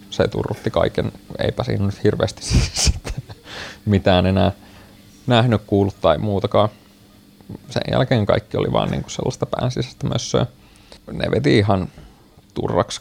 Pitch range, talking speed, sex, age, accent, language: 95-110 Hz, 115 wpm, male, 30-49, Finnish, English